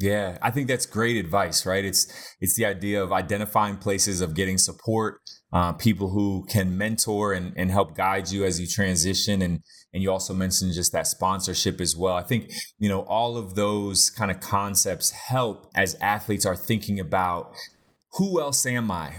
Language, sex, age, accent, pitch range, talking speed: English, male, 20-39, American, 100-125 Hz, 190 wpm